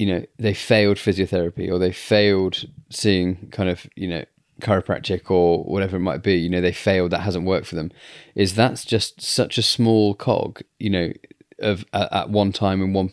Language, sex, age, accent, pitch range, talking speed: English, male, 20-39, British, 95-105 Hz, 200 wpm